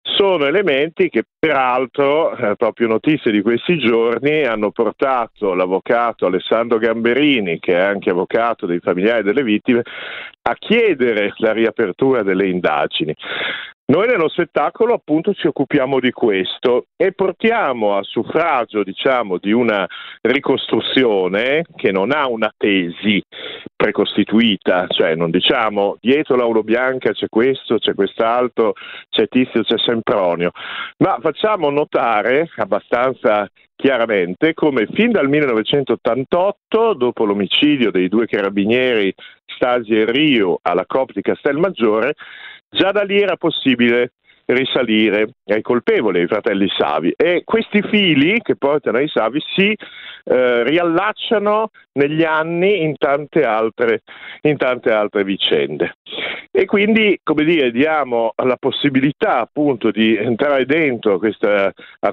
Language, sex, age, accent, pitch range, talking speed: Italian, male, 50-69, native, 110-160 Hz, 125 wpm